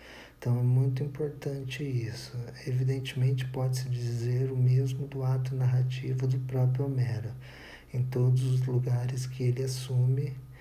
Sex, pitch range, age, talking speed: male, 125-130 Hz, 50-69, 130 wpm